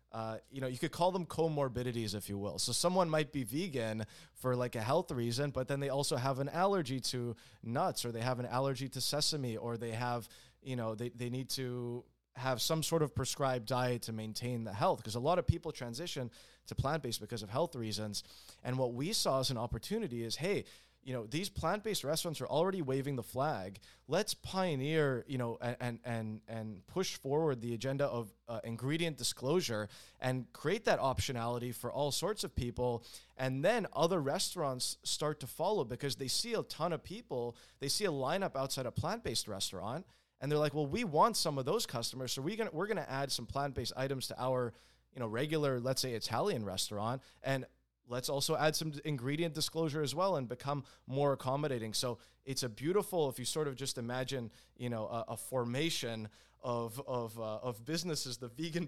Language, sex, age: English, male, 20-39